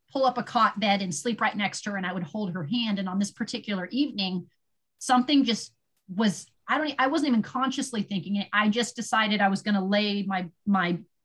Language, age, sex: English, 30-49, female